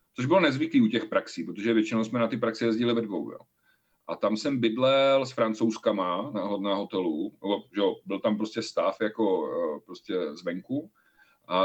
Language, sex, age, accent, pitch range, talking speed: Czech, male, 40-59, native, 110-145 Hz, 175 wpm